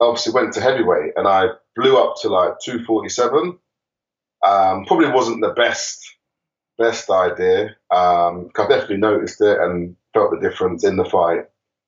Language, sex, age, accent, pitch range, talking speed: English, male, 20-39, British, 90-125 Hz, 155 wpm